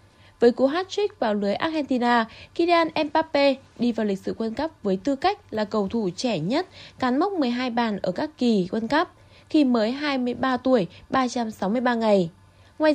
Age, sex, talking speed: 10-29, female, 175 wpm